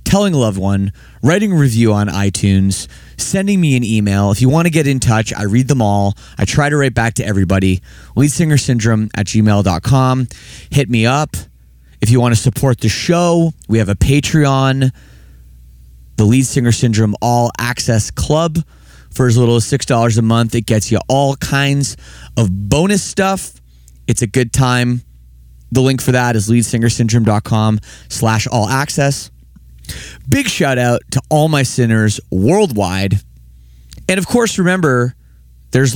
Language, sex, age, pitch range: English, male, 30-49, 105-140 Hz